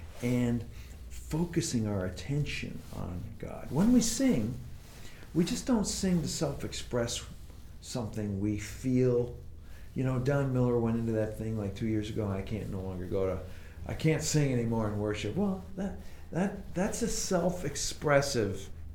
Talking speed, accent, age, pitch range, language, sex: 155 wpm, American, 50-69, 100-160 Hz, English, male